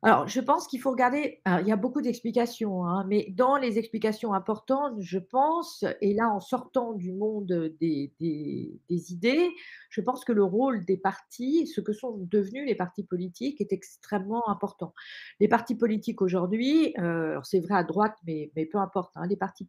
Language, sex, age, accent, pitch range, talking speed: French, female, 40-59, French, 180-245 Hz, 180 wpm